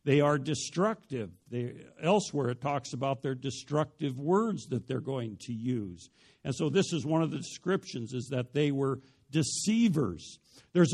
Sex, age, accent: male, 60-79, American